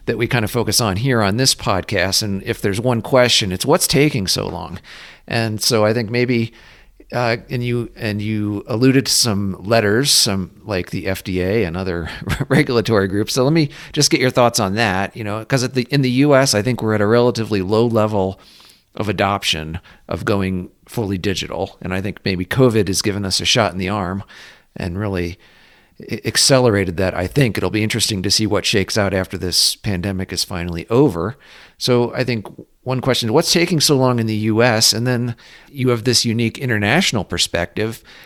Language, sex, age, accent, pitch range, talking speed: English, male, 40-59, American, 100-120 Hz, 200 wpm